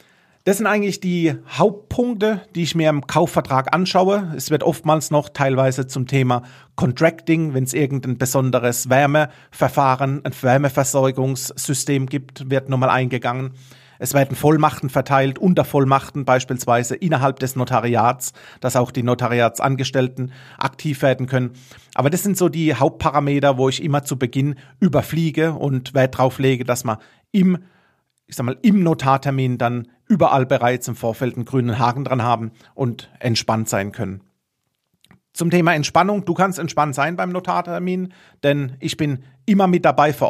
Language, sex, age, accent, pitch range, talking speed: German, male, 40-59, German, 130-160 Hz, 150 wpm